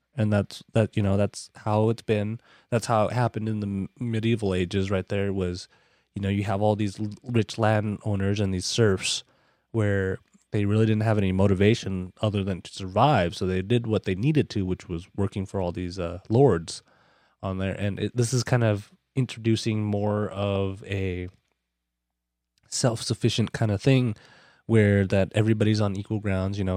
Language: English